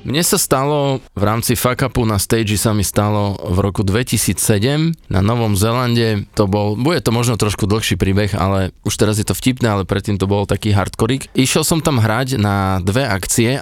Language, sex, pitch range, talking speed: Slovak, male, 100-125 Hz, 195 wpm